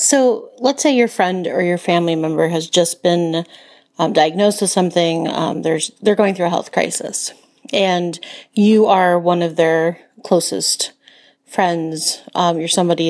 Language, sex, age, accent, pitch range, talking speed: English, female, 40-59, American, 170-210 Hz, 160 wpm